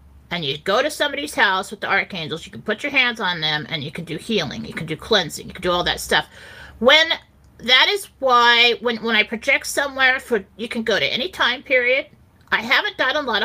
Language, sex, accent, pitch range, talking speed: English, female, American, 190-250 Hz, 235 wpm